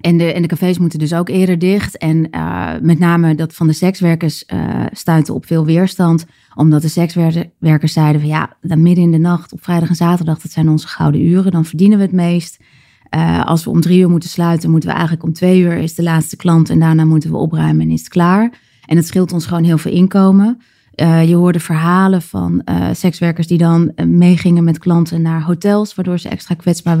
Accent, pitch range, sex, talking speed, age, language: Dutch, 160-175 Hz, female, 220 wpm, 20-39, Dutch